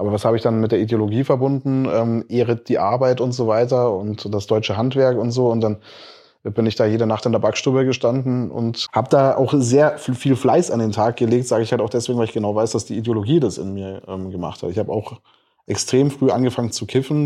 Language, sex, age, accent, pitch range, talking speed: German, male, 20-39, German, 110-130 Hz, 245 wpm